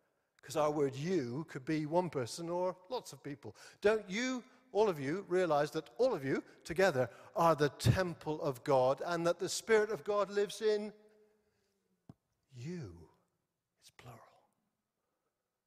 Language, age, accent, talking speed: English, 50-69, British, 150 wpm